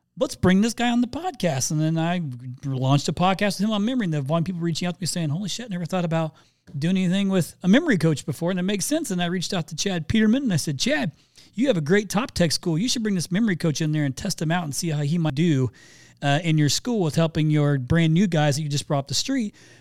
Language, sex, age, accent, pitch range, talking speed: English, male, 40-59, American, 145-195 Hz, 290 wpm